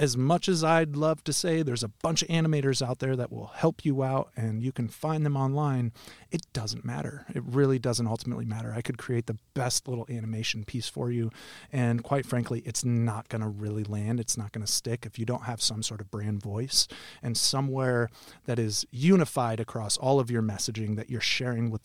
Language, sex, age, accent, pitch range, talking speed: English, male, 30-49, American, 115-135 Hz, 220 wpm